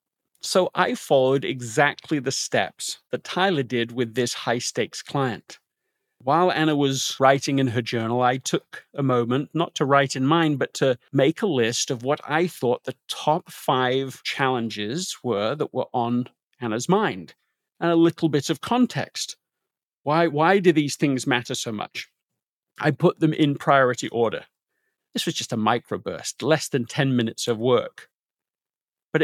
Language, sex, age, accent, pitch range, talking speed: English, male, 40-59, British, 130-160 Hz, 165 wpm